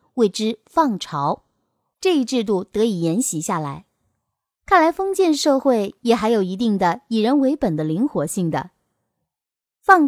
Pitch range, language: 200-295 Hz, Chinese